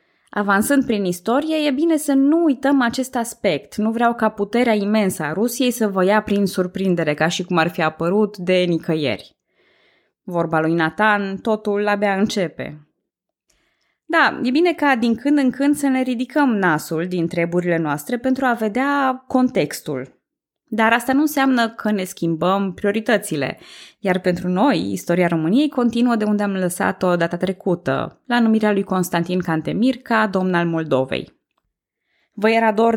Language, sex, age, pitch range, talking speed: Romanian, female, 20-39, 180-245 Hz, 160 wpm